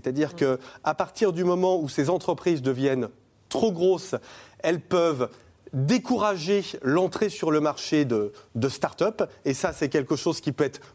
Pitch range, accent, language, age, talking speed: 135-185 Hz, French, French, 30-49, 160 wpm